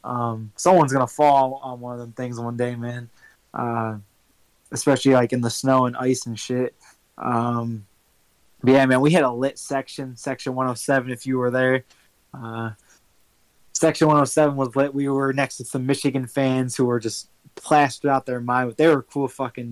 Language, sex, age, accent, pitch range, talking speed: English, male, 20-39, American, 120-140 Hz, 185 wpm